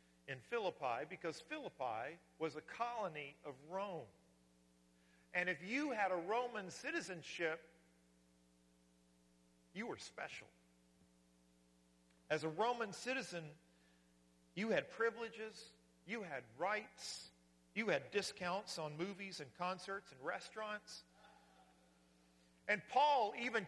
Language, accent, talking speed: English, American, 105 wpm